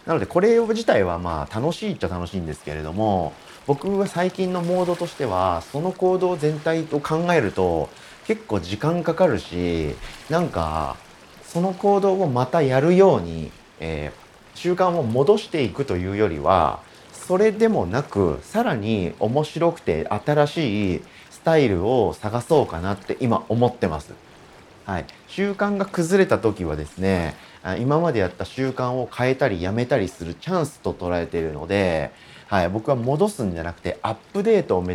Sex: male